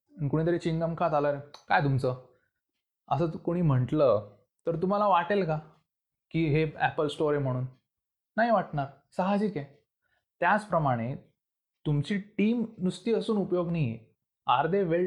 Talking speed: 110 wpm